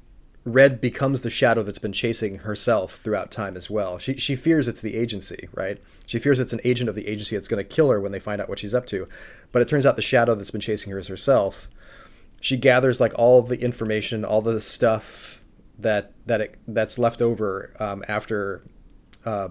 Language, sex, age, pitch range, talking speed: English, male, 30-49, 105-125 Hz, 220 wpm